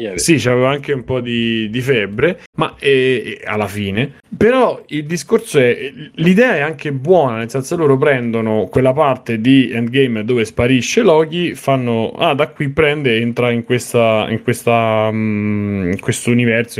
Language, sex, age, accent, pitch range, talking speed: Italian, male, 30-49, native, 110-135 Hz, 165 wpm